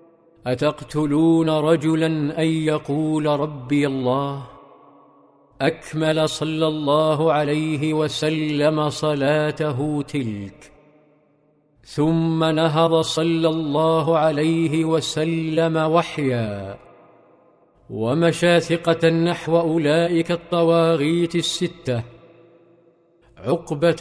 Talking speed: 65 wpm